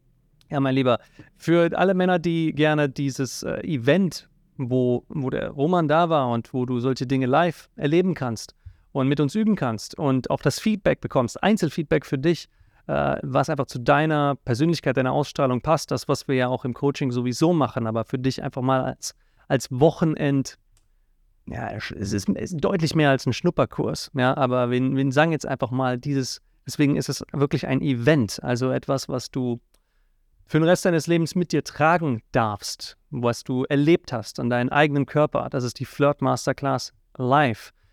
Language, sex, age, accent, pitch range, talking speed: German, male, 40-59, German, 125-155 Hz, 185 wpm